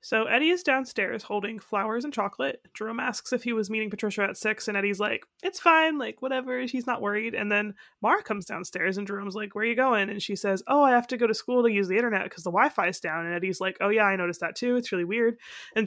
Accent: American